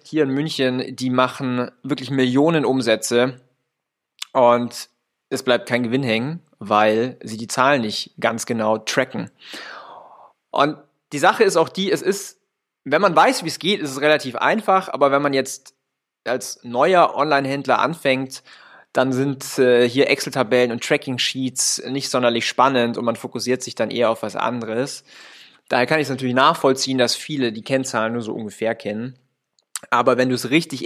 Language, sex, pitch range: German, male, 120-140 Hz